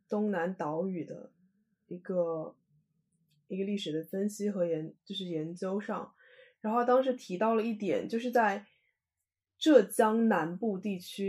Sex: female